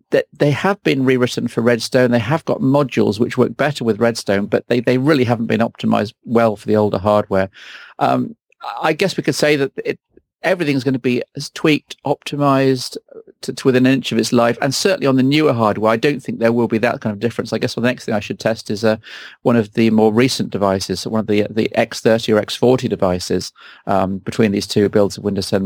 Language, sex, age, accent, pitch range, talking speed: English, male, 40-59, British, 110-140 Hz, 235 wpm